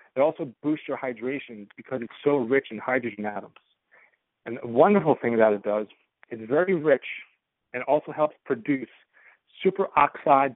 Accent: American